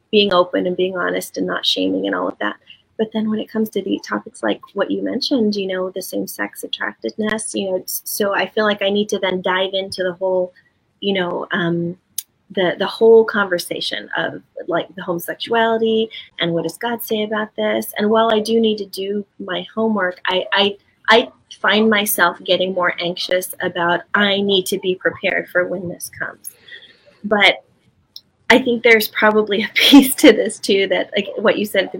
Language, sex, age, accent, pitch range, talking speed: English, female, 30-49, American, 180-220 Hz, 200 wpm